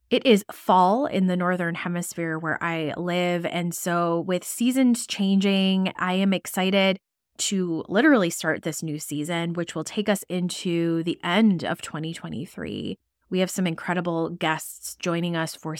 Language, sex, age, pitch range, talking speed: English, female, 20-39, 165-210 Hz, 155 wpm